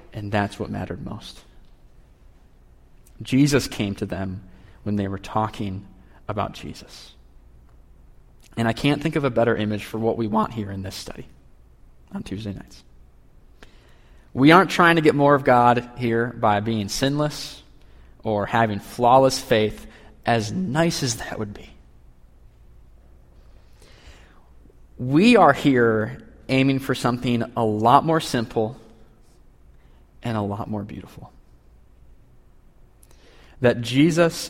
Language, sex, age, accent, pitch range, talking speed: English, male, 30-49, American, 100-135 Hz, 125 wpm